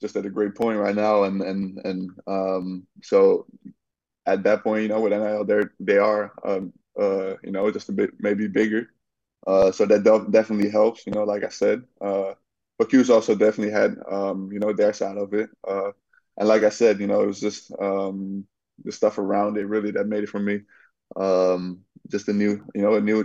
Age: 20-39